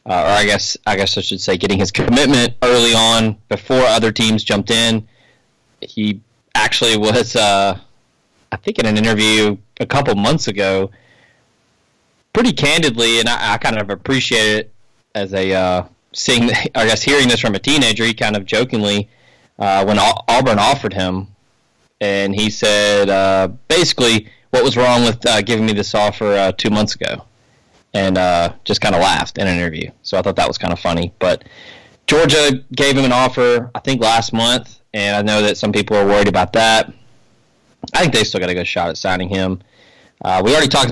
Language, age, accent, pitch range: English, 20-39, American, 100-120 Hz